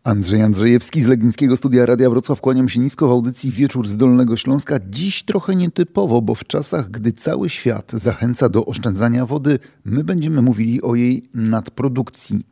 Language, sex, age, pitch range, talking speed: Polish, male, 40-59, 120-150 Hz, 170 wpm